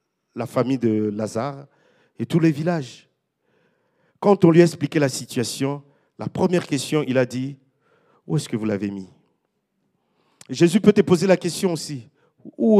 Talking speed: 170 wpm